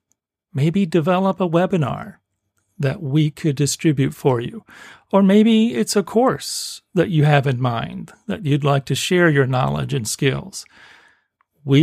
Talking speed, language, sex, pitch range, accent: 150 wpm, English, male, 140-195 Hz, American